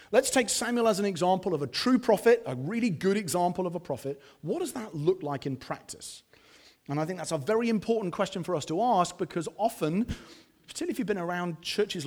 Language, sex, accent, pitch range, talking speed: English, male, British, 150-205 Hz, 220 wpm